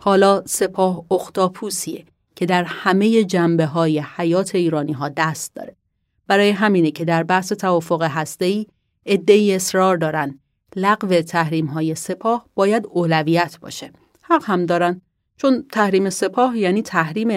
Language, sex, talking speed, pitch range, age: Persian, female, 120 wpm, 160-210 Hz, 30-49